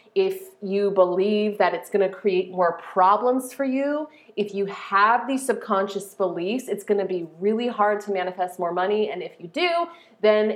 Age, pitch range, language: 30-49, 195-265 Hz, English